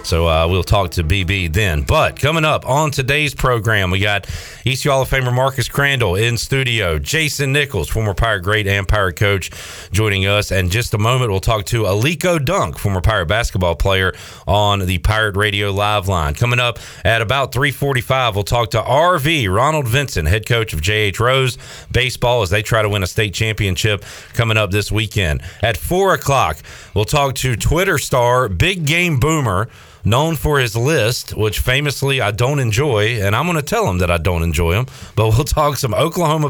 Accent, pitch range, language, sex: American, 100-135 Hz, English, male